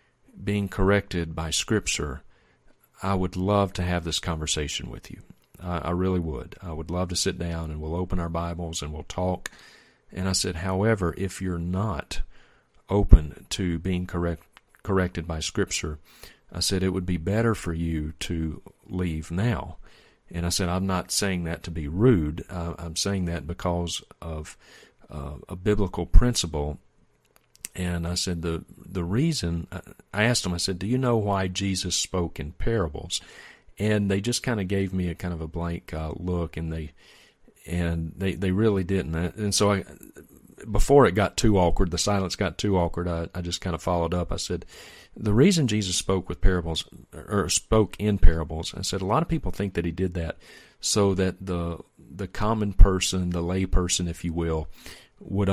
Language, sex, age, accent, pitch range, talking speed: English, male, 40-59, American, 85-100 Hz, 185 wpm